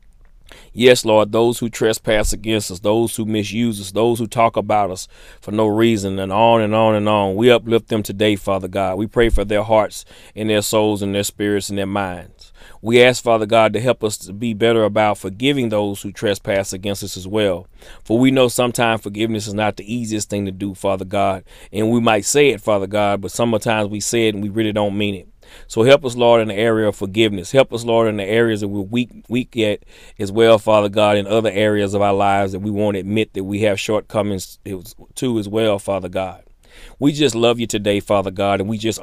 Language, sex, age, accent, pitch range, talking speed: English, male, 30-49, American, 100-115 Hz, 230 wpm